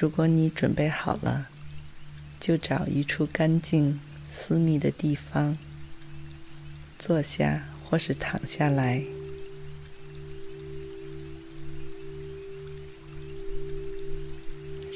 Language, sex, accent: Chinese, female, native